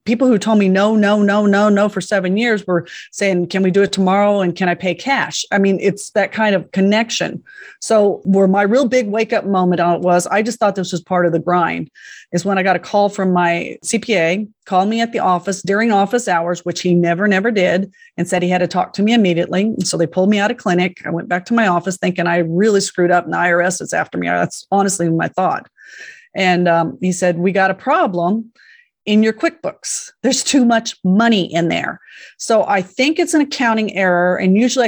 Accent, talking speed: American, 230 wpm